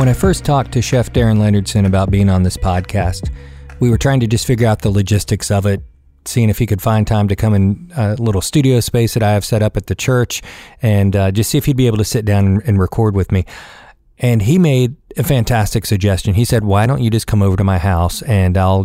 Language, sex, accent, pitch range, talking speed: English, male, American, 95-120 Hz, 250 wpm